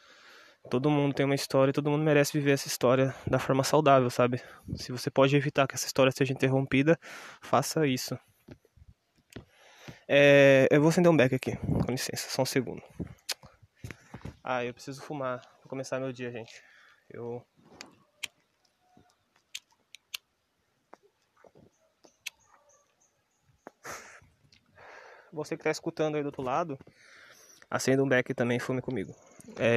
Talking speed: 125 wpm